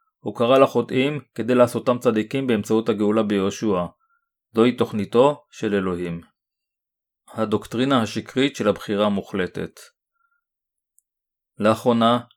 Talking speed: 90 wpm